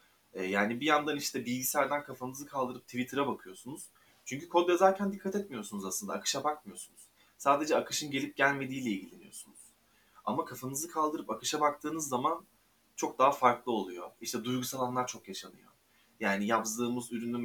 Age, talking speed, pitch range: 30-49, 140 wpm, 110-135 Hz